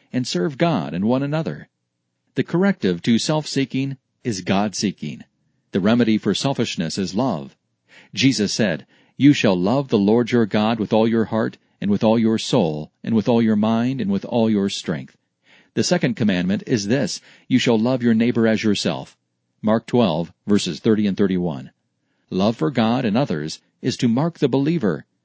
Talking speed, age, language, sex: 175 wpm, 40-59, English, male